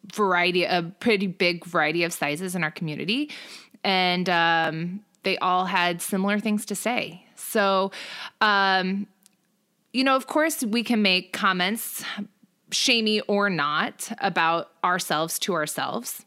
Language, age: English, 20-39